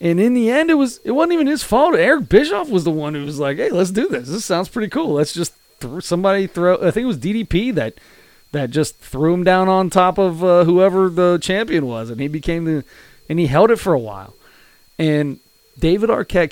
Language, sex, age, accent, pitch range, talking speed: English, male, 30-49, American, 125-175 Hz, 235 wpm